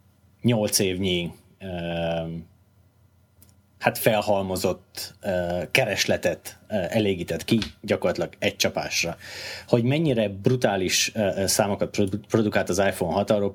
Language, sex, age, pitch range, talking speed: Hungarian, male, 30-49, 90-110 Hz, 80 wpm